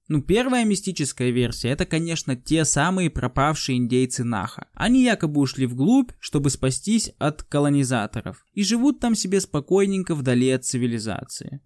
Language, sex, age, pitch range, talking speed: Russian, male, 20-39, 125-165 Hz, 140 wpm